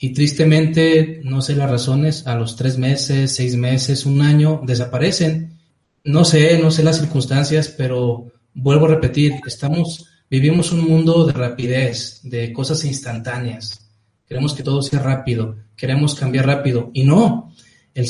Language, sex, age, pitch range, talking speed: Spanish, male, 30-49, 130-160 Hz, 150 wpm